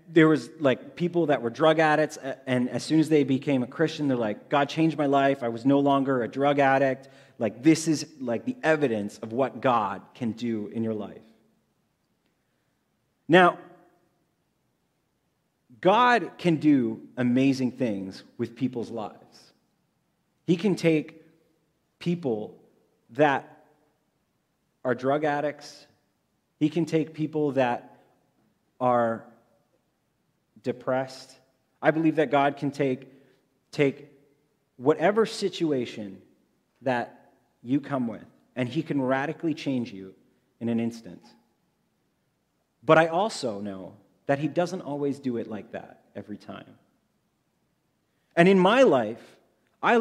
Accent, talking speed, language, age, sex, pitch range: American, 130 wpm, English, 30-49, male, 125-160 Hz